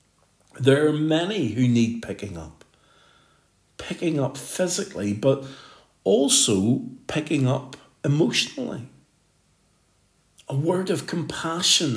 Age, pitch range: 50-69, 105-140 Hz